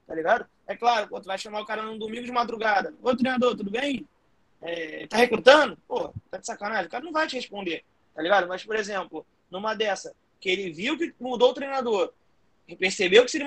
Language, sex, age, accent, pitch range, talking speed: Portuguese, male, 20-39, Brazilian, 190-255 Hz, 215 wpm